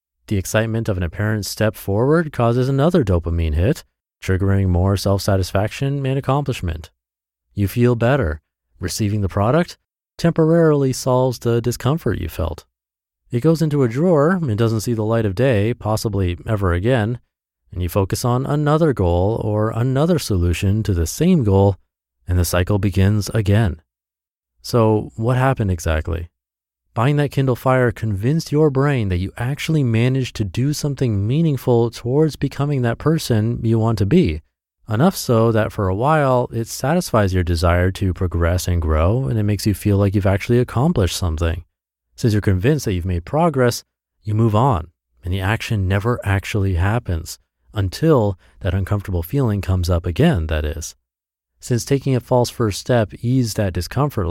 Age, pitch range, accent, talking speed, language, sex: 30-49, 90-125 Hz, American, 160 wpm, English, male